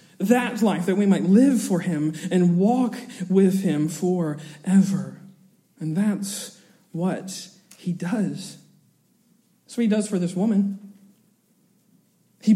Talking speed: 125 wpm